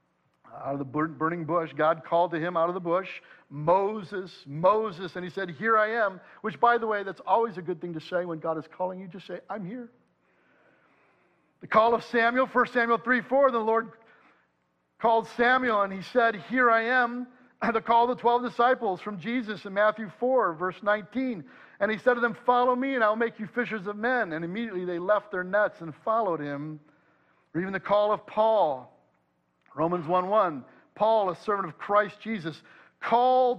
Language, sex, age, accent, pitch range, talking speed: English, male, 50-69, American, 180-235 Hz, 200 wpm